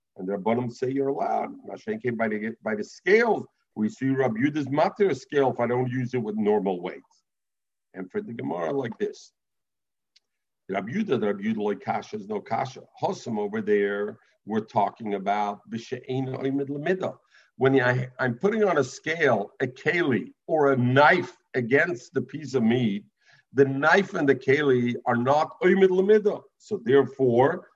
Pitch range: 125-195 Hz